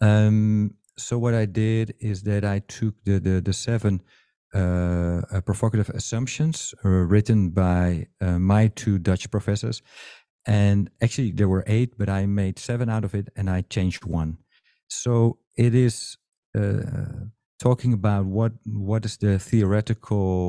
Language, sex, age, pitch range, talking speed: English, male, 50-69, 95-115 Hz, 145 wpm